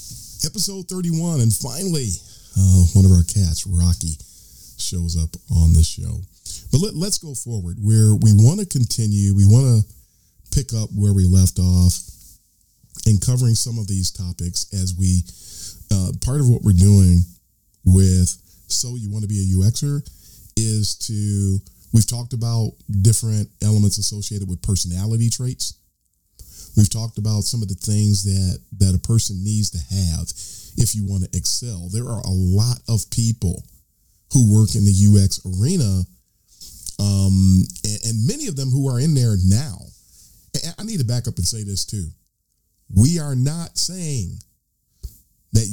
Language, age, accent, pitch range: English, 40-59, American, 95-115 Hz